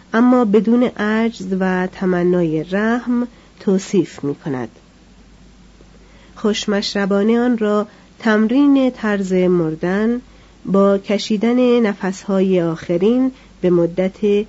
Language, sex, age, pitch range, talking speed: Persian, female, 40-59, 180-230 Hz, 85 wpm